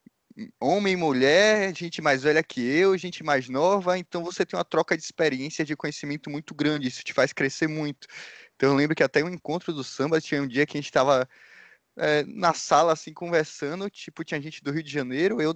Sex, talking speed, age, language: male, 215 wpm, 20-39, Portuguese